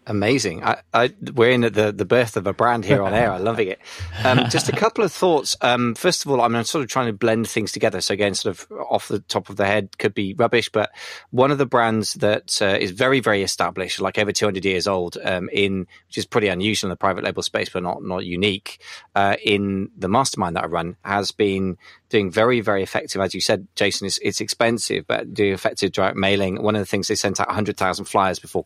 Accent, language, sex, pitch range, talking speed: British, English, male, 95-115 Hz, 245 wpm